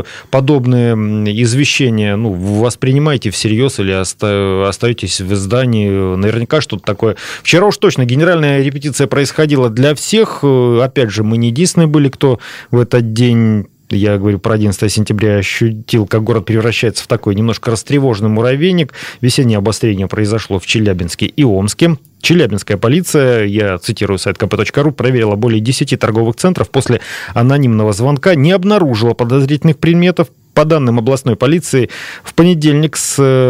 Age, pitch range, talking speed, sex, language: 30-49, 110-145 Hz, 135 wpm, male, Russian